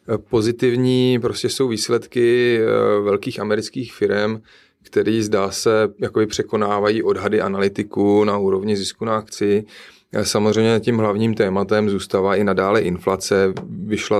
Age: 30-49